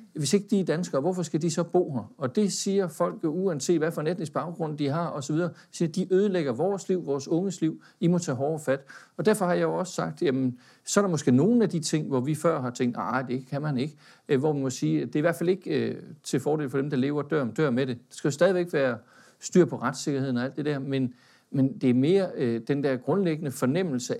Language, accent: Danish, native